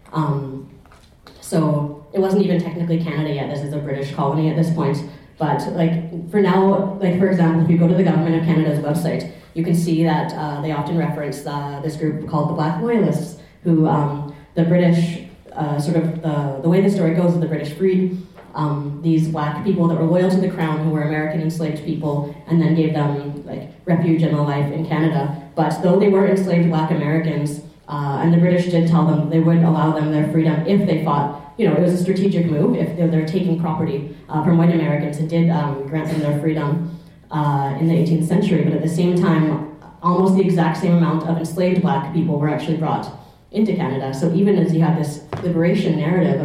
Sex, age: female, 30-49